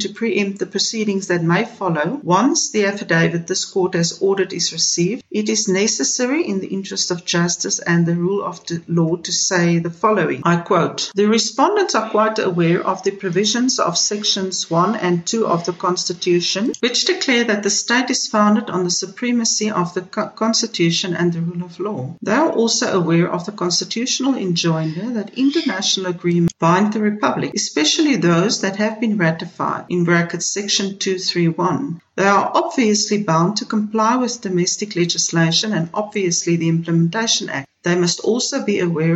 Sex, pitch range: female, 175-220 Hz